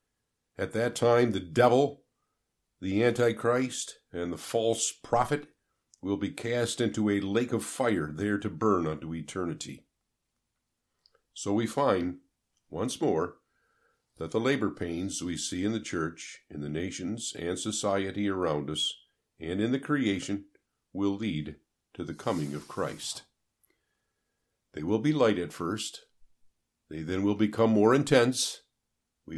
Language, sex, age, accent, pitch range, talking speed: English, male, 50-69, American, 90-125 Hz, 140 wpm